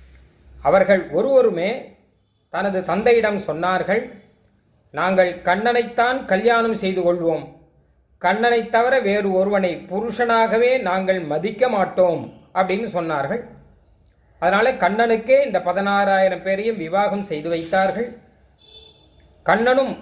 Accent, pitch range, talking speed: native, 180-230 Hz, 85 wpm